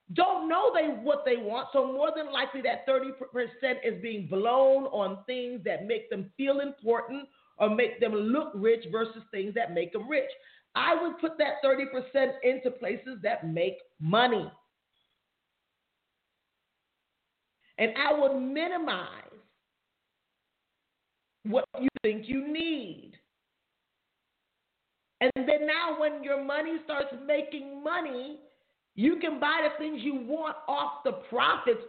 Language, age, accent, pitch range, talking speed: English, 40-59, American, 255-310 Hz, 130 wpm